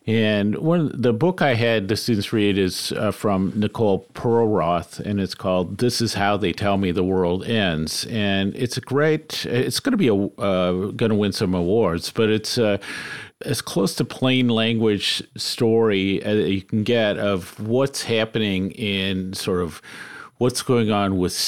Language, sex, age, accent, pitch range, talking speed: English, male, 50-69, American, 95-115 Hz, 175 wpm